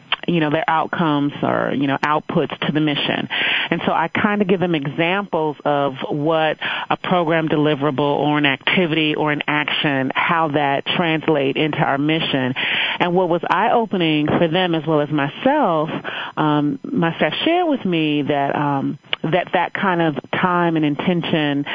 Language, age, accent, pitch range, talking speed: English, 30-49, American, 150-180 Hz, 165 wpm